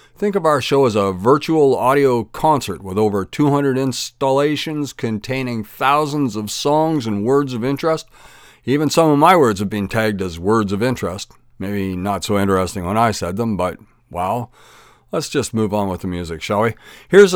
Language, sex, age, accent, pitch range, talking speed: English, male, 50-69, American, 105-135 Hz, 185 wpm